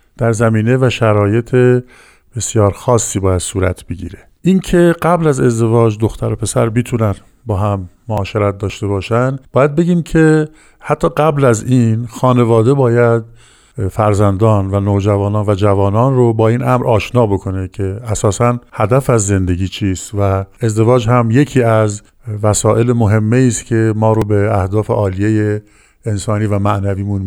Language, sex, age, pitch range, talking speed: Persian, male, 50-69, 105-130 Hz, 145 wpm